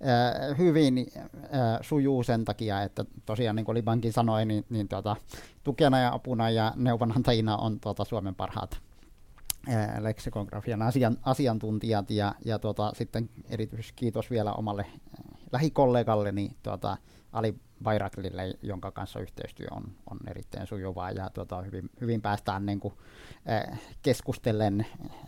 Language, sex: Finnish, male